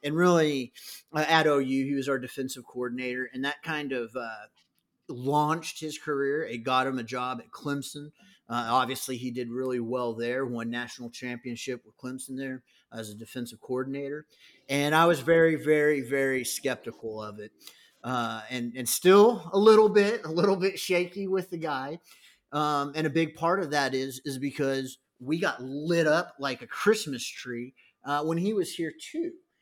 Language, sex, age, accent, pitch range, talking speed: English, male, 30-49, American, 125-160 Hz, 180 wpm